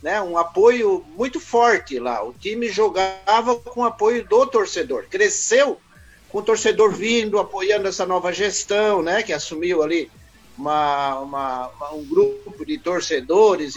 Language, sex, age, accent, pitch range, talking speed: Portuguese, male, 50-69, Brazilian, 175-255 Hz, 150 wpm